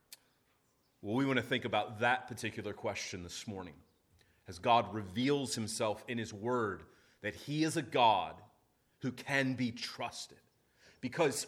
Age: 30-49